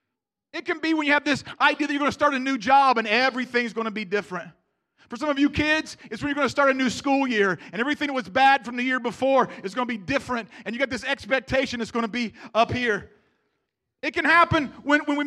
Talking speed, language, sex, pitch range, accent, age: 265 wpm, English, male, 230-290 Hz, American, 40-59